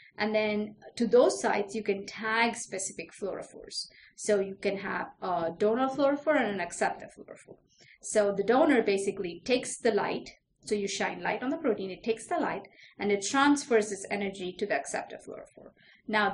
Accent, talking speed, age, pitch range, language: Indian, 180 wpm, 30-49, 200-240 Hz, English